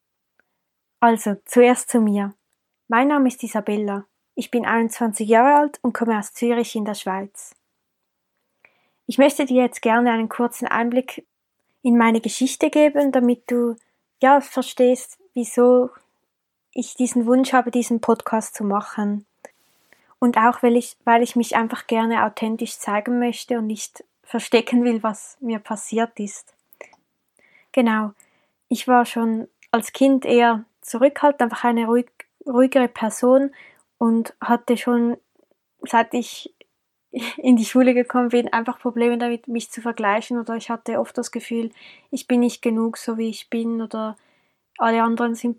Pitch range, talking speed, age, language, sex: 230-250 Hz, 145 wpm, 20-39, German, female